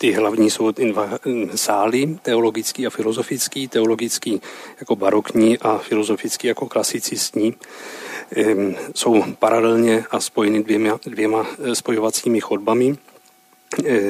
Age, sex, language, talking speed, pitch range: 40-59, male, Czech, 110 wpm, 110-120 Hz